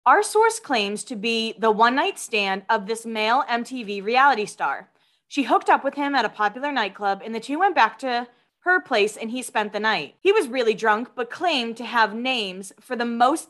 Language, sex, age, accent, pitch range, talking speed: English, female, 20-39, American, 225-300 Hz, 220 wpm